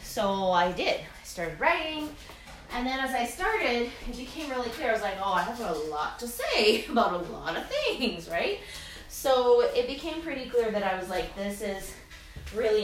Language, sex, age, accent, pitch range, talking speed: English, female, 20-39, American, 185-265 Hz, 200 wpm